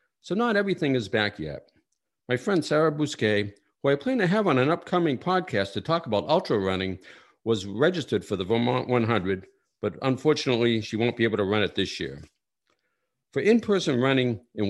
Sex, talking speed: male, 185 wpm